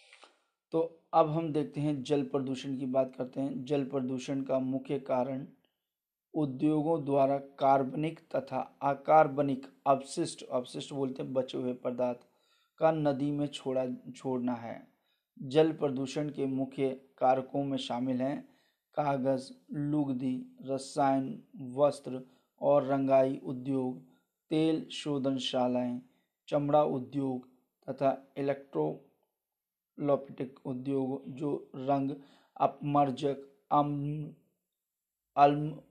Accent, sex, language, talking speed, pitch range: native, male, Hindi, 100 wpm, 130-145 Hz